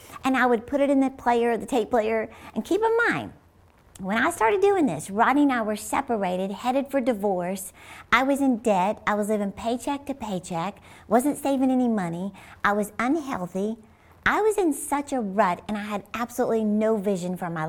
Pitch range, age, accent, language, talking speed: 195-245 Hz, 50-69, American, English, 200 wpm